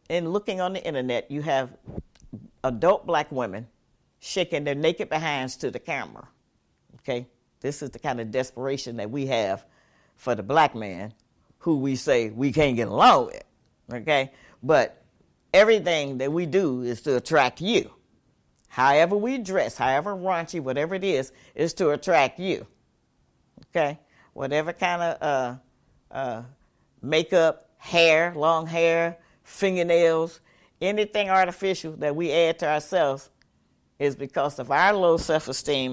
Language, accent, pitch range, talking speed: English, American, 130-170 Hz, 140 wpm